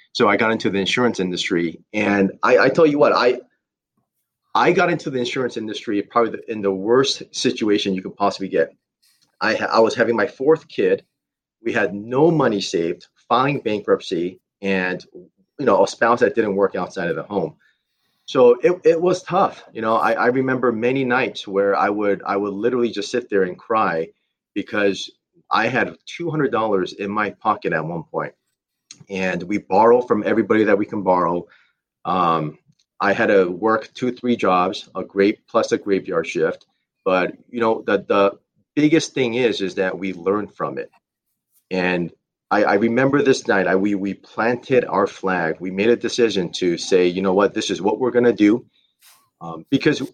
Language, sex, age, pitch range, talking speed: English, male, 30-49, 95-120 Hz, 185 wpm